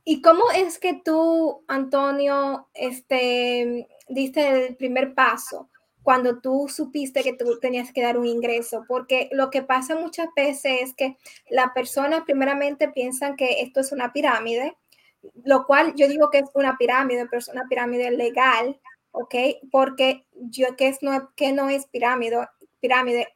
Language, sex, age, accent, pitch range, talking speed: Spanish, female, 20-39, American, 255-285 Hz, 160 wpm